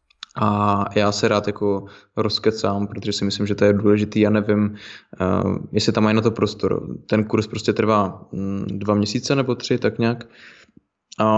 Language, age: Slovak, 20-39